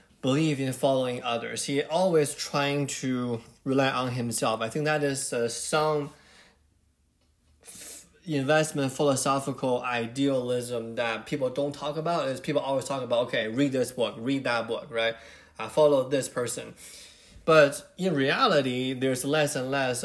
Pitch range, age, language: 120-145 Hz, 20-39, English